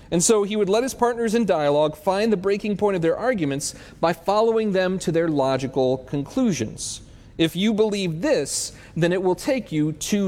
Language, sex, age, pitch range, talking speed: English, male, 40-59, 155-220 Hz, 195 wpm